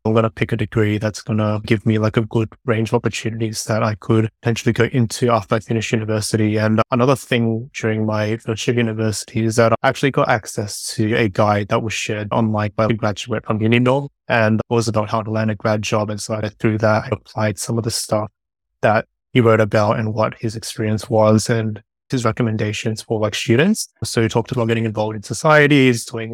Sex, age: male, 20-39